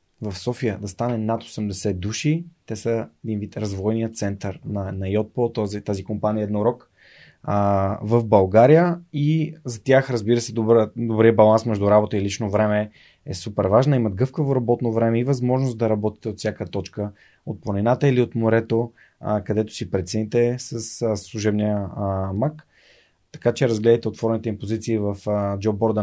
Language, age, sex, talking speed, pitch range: Bulgarian, 20-39, male, 160 wpm, 100-115 Hz